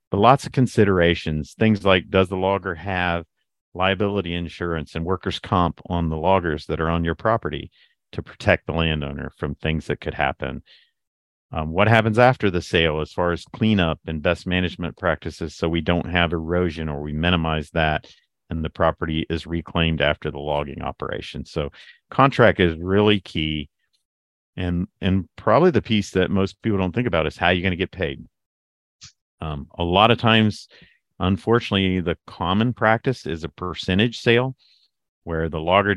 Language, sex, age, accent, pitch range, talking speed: English, male, 50-69, American, 80-100 Hz, 170 wpm